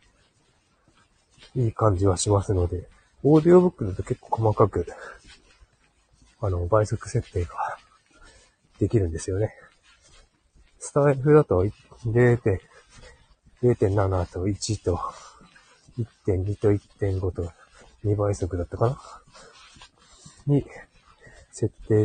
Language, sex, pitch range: Japanese, male, 95-120 Hz